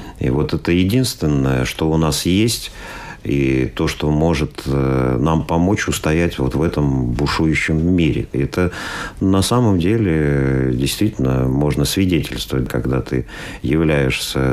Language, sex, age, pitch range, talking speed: Russian, male, 50-69, 70-85 Hz, 125 wpm